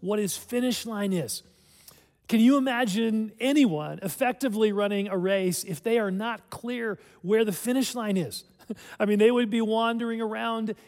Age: 40-59